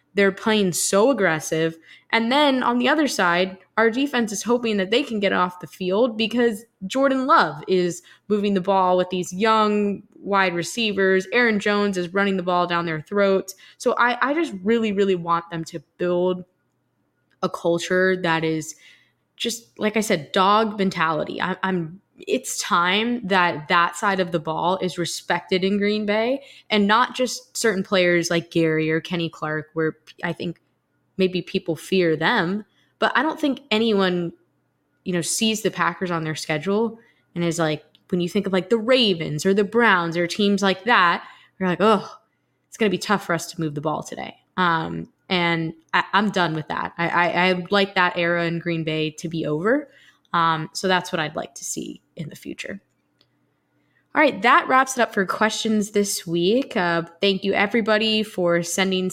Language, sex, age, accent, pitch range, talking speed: English, female, 10-29, American, 170-215 Hz, 185 wpm